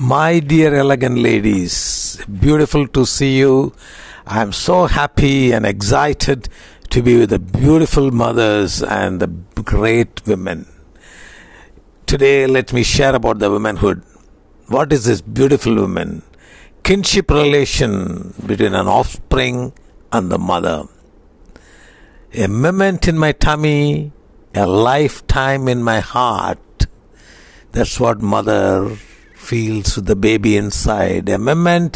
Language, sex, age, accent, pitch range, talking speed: Tamil, male, 60-79, native, 100-140 Hz, 120 wpm